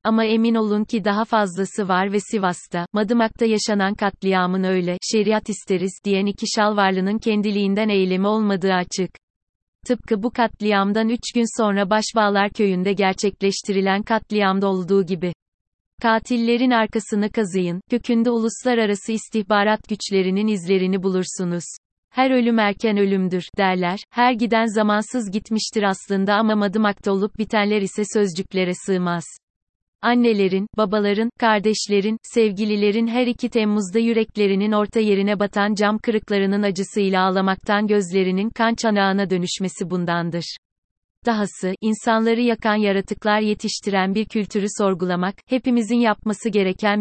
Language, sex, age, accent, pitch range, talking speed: Turkish, female, 30-49, native, 190-220 Hz, 115 wpm